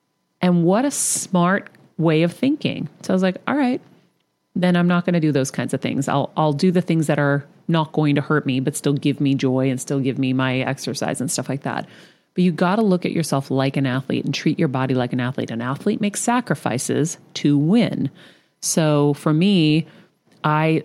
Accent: American